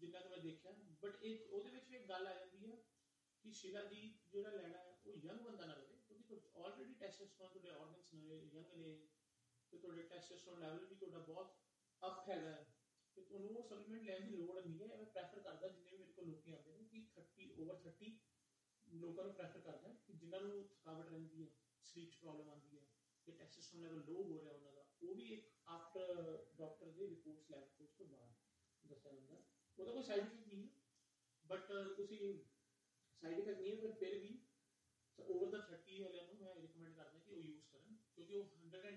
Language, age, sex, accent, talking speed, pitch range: English, 30-49, male, Indian, 50 wpm, 160-205 Hz